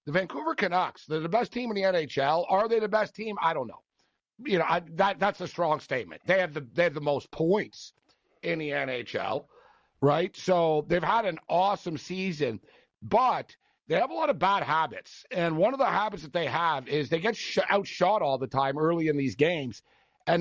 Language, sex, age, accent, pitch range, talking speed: English, male, 50-69, American, 155-200 Hz, 210 wpm